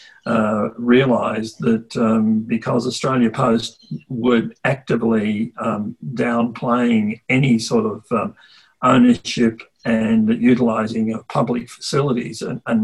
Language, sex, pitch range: English, male, 115-140 Hz